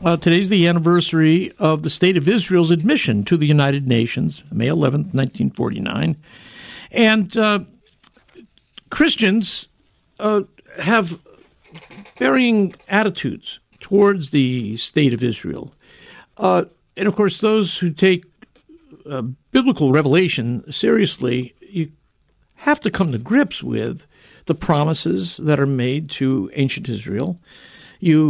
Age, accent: 60-79, American